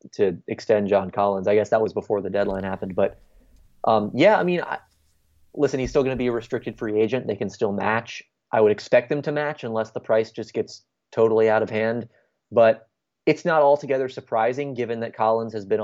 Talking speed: 210 wpm